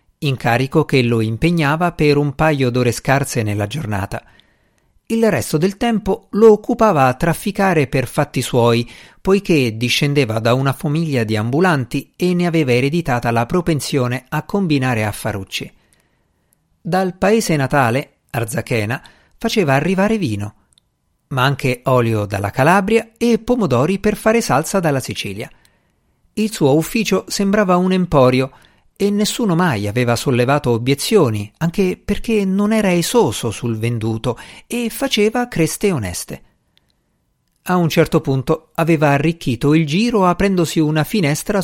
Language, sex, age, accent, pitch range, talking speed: Italian, male, 50-69, native, 125-185 Hz, 130 wpm